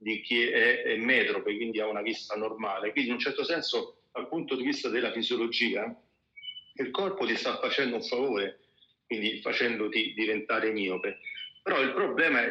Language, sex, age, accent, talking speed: Italian, male, 40-59, native, 165 wpm